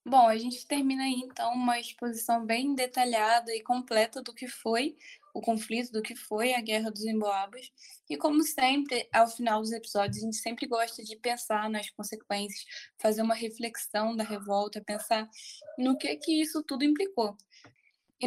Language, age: Portuguese, 10-29